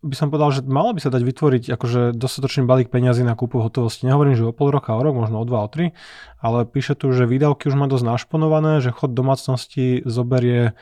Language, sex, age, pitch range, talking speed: Slovak, male, 20-39, 120-140 Hz, 225 wpm